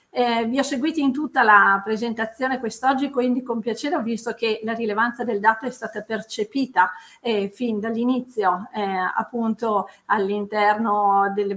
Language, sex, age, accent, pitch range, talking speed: Italian, female, 40-59, native, 210-260 Hz, 145 wpm